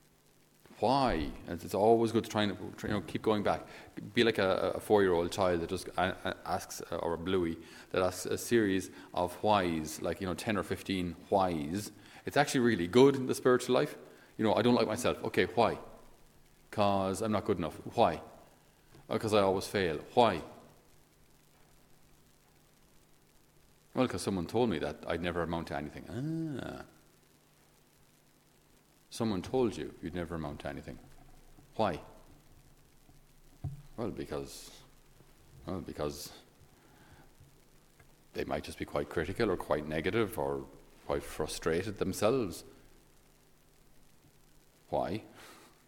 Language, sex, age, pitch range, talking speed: English, male, 40-59, 85-115 Hz, 135 wpm